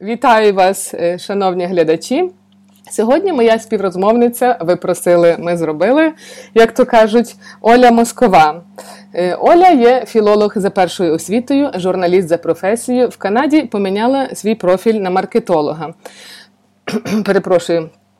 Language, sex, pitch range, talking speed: Ukrainian, female, 165-215 Hz, 110 wpm